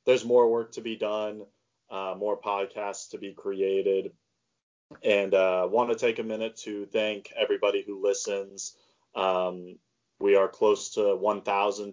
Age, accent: 20-39, American